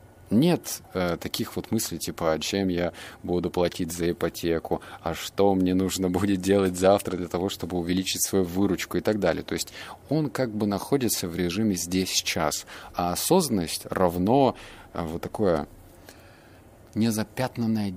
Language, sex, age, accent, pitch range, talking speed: Russian, male, 30-49, native, 90-115 Hz, 145 wpm